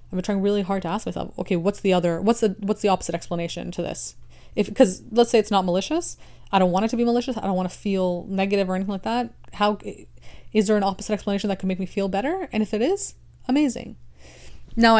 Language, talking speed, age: English, 250 wpm, 30-49